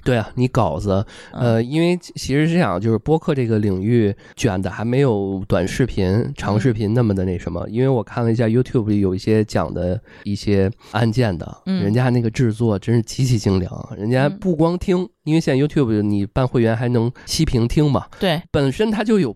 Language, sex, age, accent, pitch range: Chinese, male, 20-39, native, 100-135 Hz